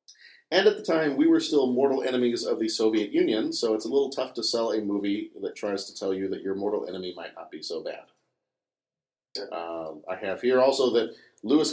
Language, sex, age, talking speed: English, male, 40-59, 220 wpm